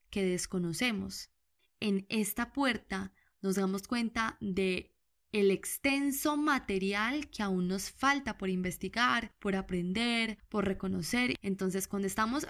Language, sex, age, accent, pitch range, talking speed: Spanish, female, 10-29, Colombian, 190-225 Hz, 120 wpm